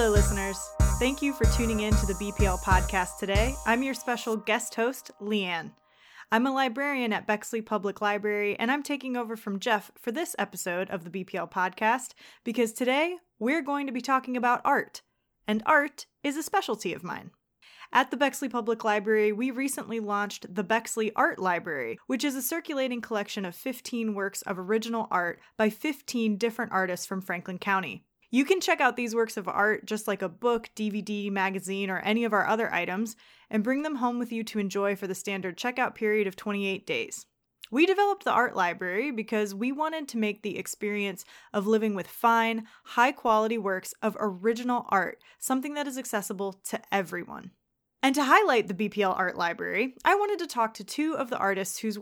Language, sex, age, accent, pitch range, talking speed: English, female, 20-39, American, 200-255 Hz, 190 wpm